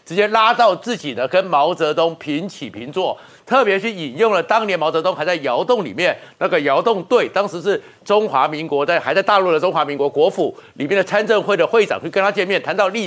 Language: Chinese